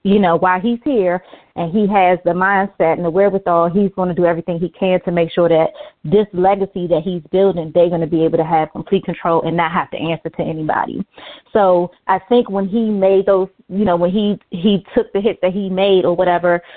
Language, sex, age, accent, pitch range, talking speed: English, female, 30-49, American, 180-215 Hz, 235 wpm